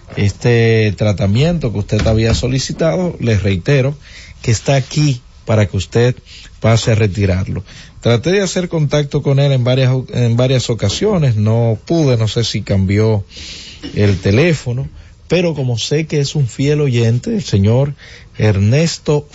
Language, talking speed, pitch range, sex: Spanish, 145 wpm, 105-140 Hz, male